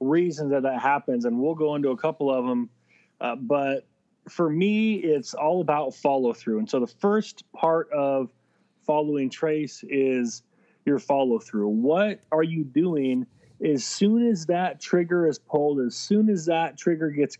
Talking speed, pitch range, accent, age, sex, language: 170 wpm, 130-165 Hz, American, 30-49, male, English